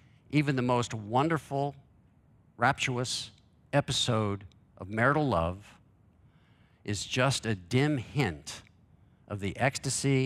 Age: 50-69